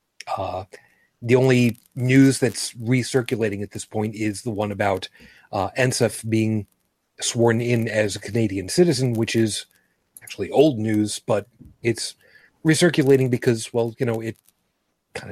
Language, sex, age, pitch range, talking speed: English, male, 40-59, 105-125 Hz, 140 wpm